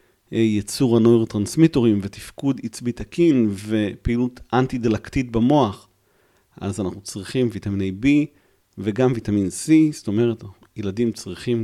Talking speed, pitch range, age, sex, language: 110 wpm, 100-125 Hz, 40-59, male, Hebrew